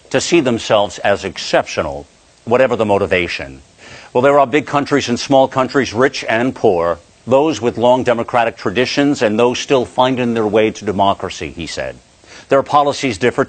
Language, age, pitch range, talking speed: English, 50-69, 105-135 Hz, 165 wpm